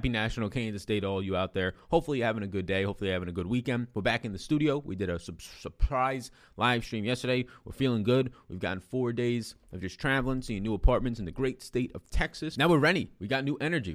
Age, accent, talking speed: 20-39, American, 260 wpm